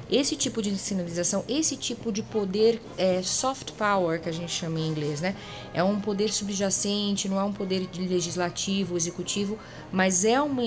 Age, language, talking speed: 20-39, Portuguese, 180 wpm